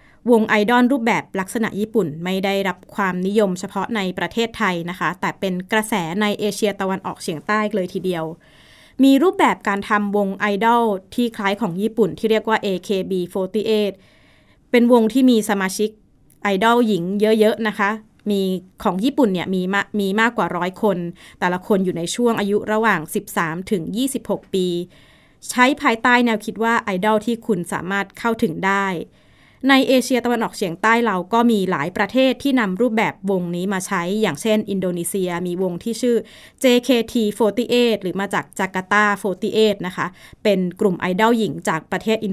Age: 20-39